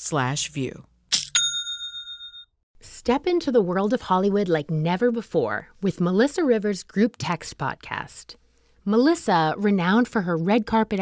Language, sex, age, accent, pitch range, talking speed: English, female, 30-49, American, 160-225 Hz, 115 wpm